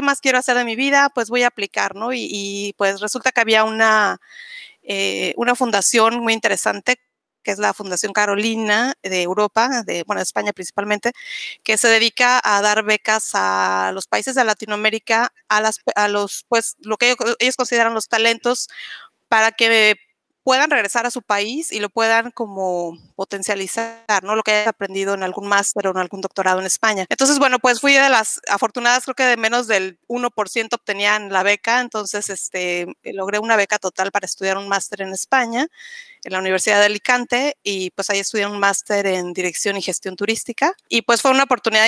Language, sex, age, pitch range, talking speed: Spanish, female, 30-49, 200-245 Hz, 190 wpm